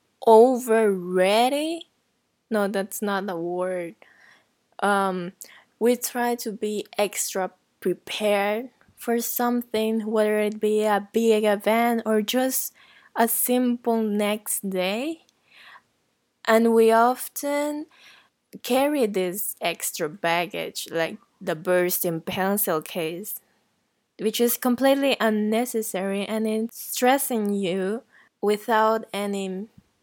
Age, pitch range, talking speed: 20-39, 195-230 Hz, 100 wpm